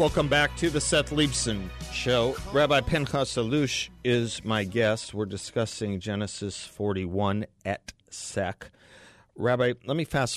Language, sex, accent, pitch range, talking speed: English, male, American, 90-115 Hz, 125 wpm